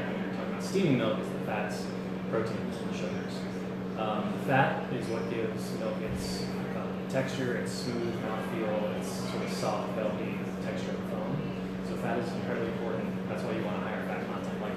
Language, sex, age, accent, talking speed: English, male, 20-39, American, 175 wpm